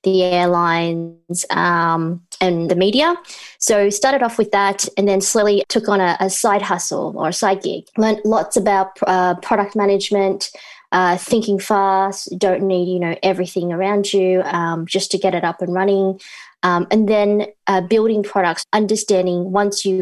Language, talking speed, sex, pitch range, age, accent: English, 175 wpm, female, 180-210 Hz, 20-39, Australian